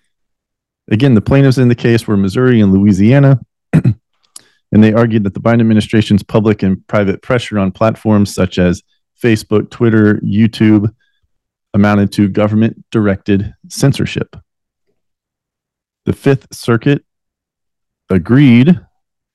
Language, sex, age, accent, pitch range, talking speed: English, male, 40-59, American, 100-120 Hz, 110 wpm